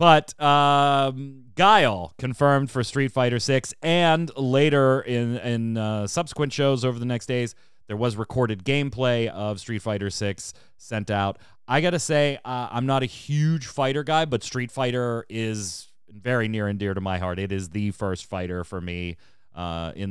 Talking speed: 180 wpm